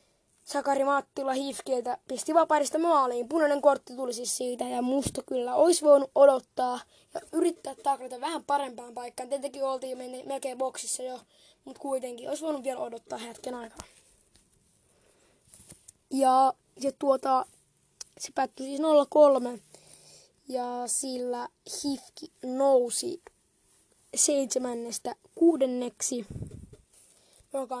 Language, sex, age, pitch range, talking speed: Finnish, female, 20-39, 245-285 Hz, 110 wpm